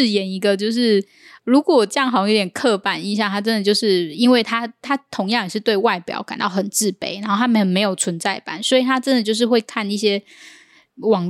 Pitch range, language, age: 195-225 Hz, Chinese, 10-29